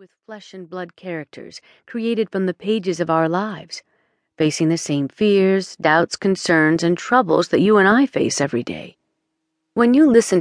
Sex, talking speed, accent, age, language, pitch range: female, 160 wpm, American, 40-59, English, 160-185 Hz